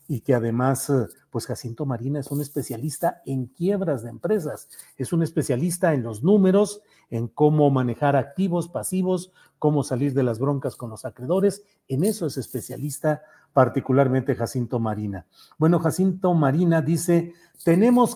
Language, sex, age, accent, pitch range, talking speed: Spanish, male, 50-69, Mexican, 130-175 Hz, 145 wpm